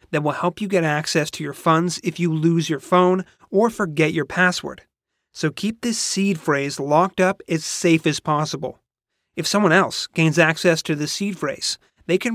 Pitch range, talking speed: 150-180 Hz, 195 wpm